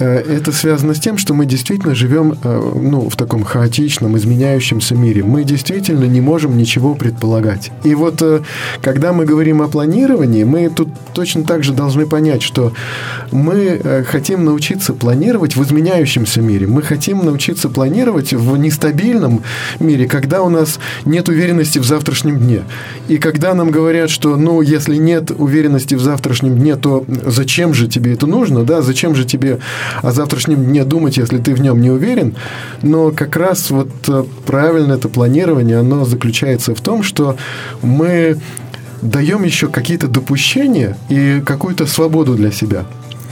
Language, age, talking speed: Russian, 20-39, 150 wpm